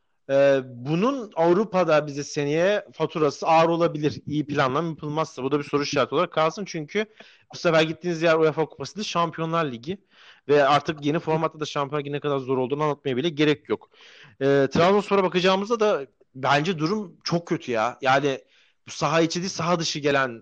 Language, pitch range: Turkish, 140-180 Hz